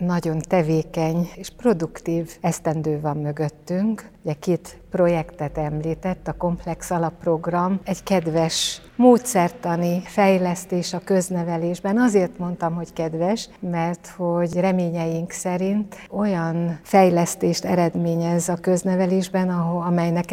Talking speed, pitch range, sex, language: 95 wpm, 160-180 Hz, female, Hungarian